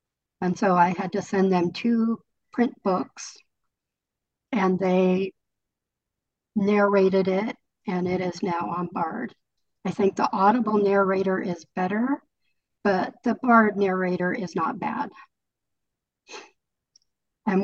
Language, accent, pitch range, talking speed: English, American, 180-210 Hz, 120 wpm